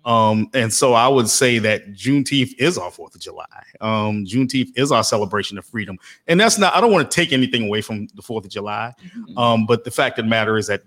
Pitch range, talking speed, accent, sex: 110-140 Hz, 245 wpm, American, male